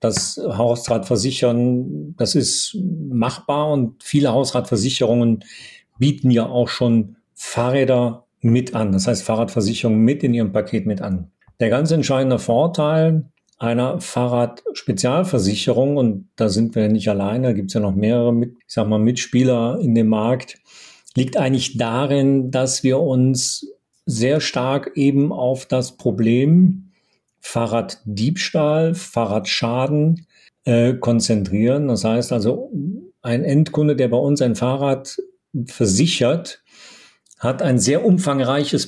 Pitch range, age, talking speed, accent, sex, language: 115-140 Hz, 50-69, 125 wpm, German, male, German